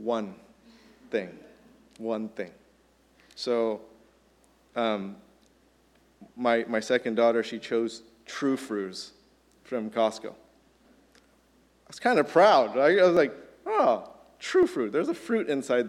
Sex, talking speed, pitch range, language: male, 120 wpm, 110-135 Hz, English